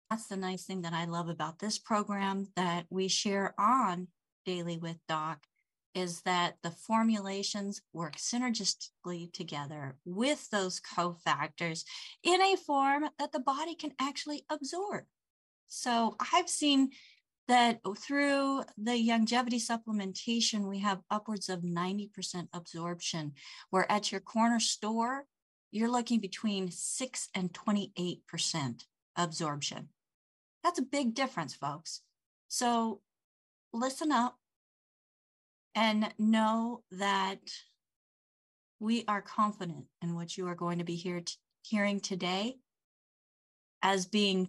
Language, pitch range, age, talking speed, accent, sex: English, 175-230 Hz, 40-59, 115 wpm, American, female